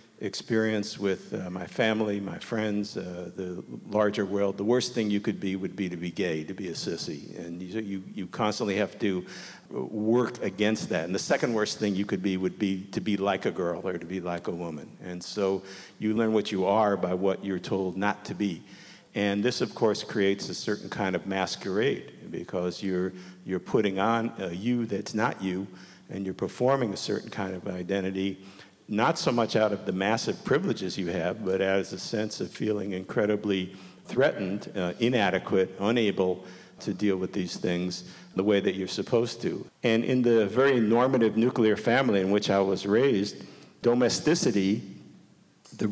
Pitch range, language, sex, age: 95-110 Hz, English, male, 50-69